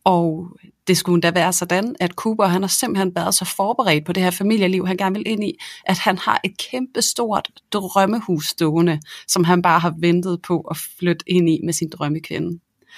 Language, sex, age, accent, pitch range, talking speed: Danish, female, 30-49, native, 175-200 Hz, 200 wpm